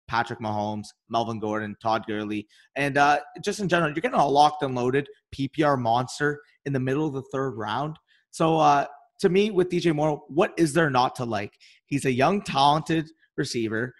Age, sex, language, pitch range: 30-49, male, English, 130-165 Hz